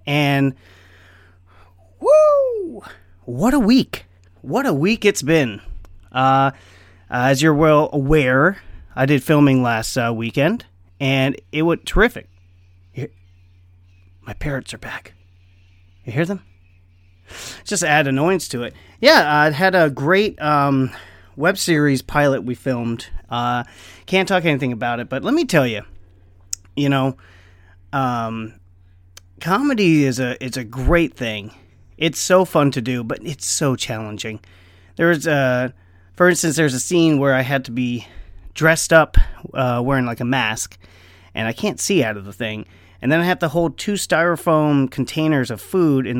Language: English